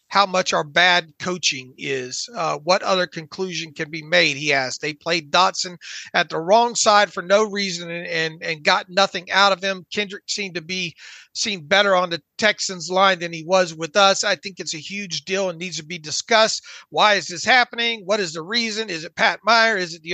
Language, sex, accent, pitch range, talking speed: English, male, American, 180-225 Hz, 220 wpm